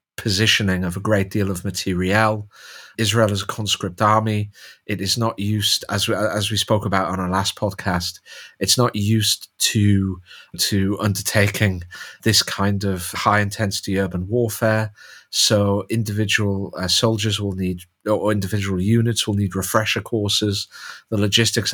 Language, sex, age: English, male, 30-49